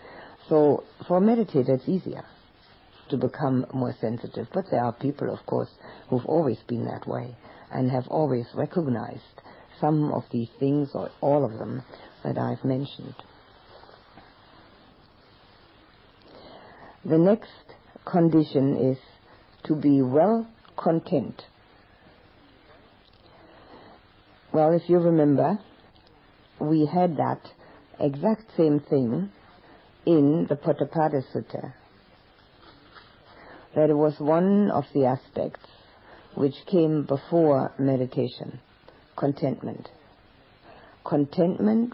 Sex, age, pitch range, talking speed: female, 50-69, 125-165 Hz, 100 wpm